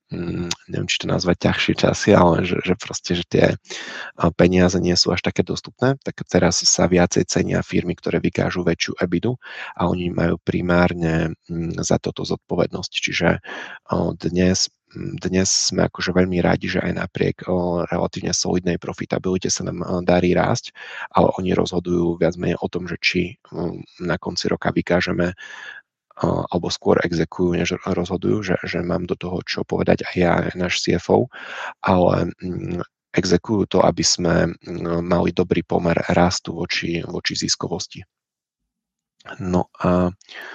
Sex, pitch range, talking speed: male, 85-95 Hz, 140 wpm